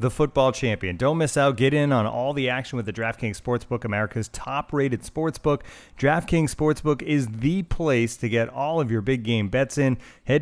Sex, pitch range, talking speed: male, 110-135 Hz, 200 wpm